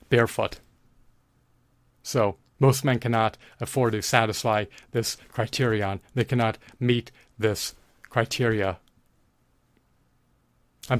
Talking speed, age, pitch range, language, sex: 85 wpm, 30-49, 110-125 Hz, English, male